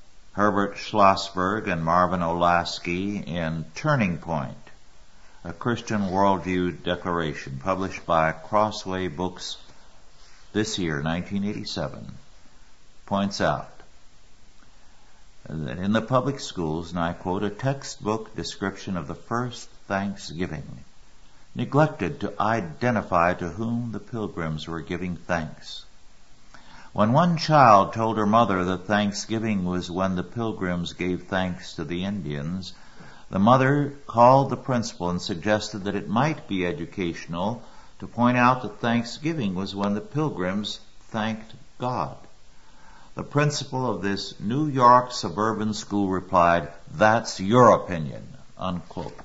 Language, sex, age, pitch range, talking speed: English, male, 60-79, 90-115 Hz, 120 wpm